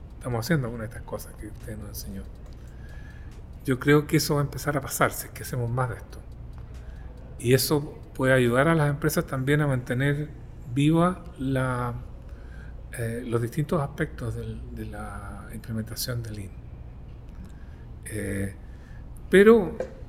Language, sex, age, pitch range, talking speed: Spanish, male, 40-59, 105-145 Hz, 130 wpm